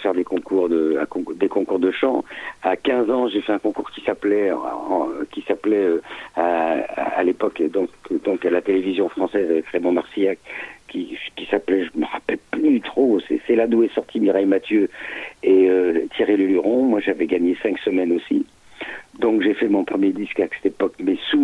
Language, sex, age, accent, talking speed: French, male, 50-69, French, 195 wpm